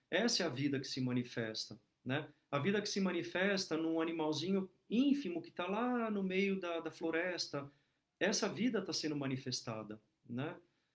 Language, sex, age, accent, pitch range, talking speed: Portuguese, male, 40-59, Brazilian, 140-175 Hz, 165 wpm